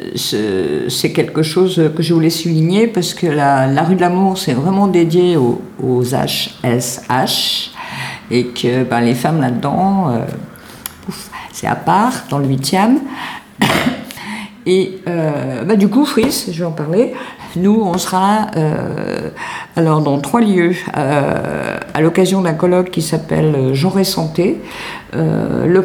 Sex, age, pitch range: female, 50-69, 130-180 Hz